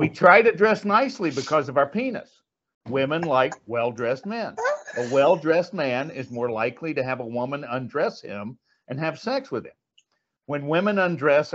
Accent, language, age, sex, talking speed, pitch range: American, English, 60-79, male, 170 wpm, 130-175 Hz